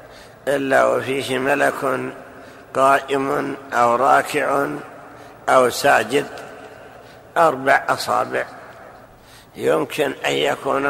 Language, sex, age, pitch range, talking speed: Arabic, male, 60-79, 125-140 Hz, 70 wpm